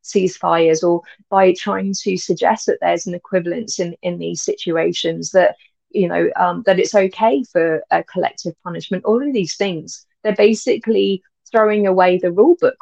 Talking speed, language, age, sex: 170 wpm, English, 30-49, female